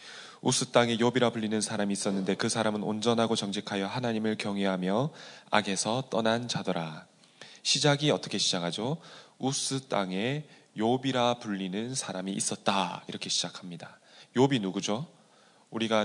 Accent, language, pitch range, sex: native, Korean, 100-135 Hz, male